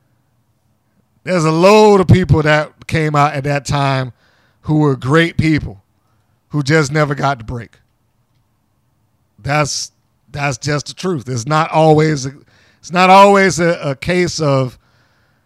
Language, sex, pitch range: English, male, 120-165 Hz